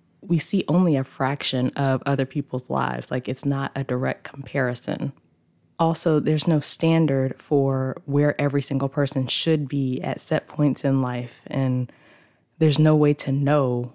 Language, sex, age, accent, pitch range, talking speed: English, female, 20-39, American, 130-150 Hz, 160 wpm